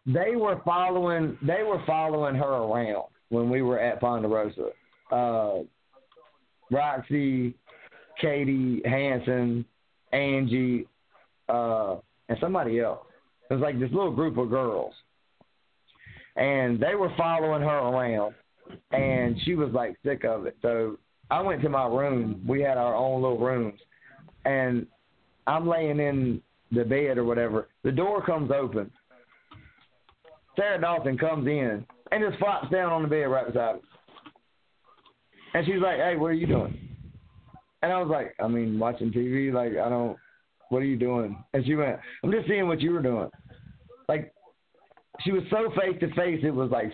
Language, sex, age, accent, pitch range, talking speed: English, male, 40-59, American, 120-165 Hz, 155 wpm